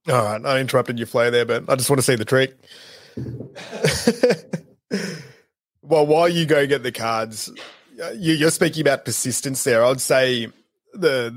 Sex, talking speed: male, 165 wpm